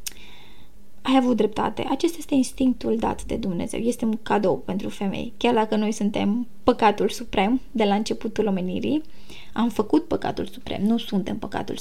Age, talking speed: 20-39, 160 wpm